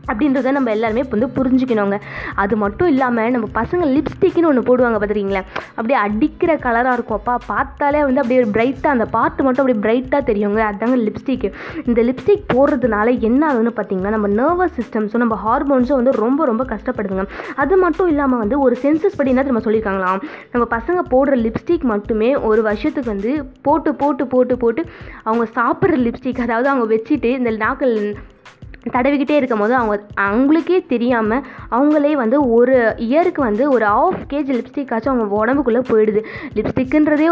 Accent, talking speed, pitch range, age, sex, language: native, 150 wpm, 220-280 Hz, 20-39, female, Tamil